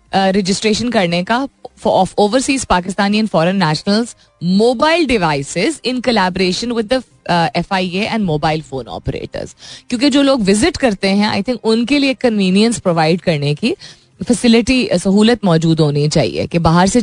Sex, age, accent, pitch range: female, 20-39, native, 170-230 Hz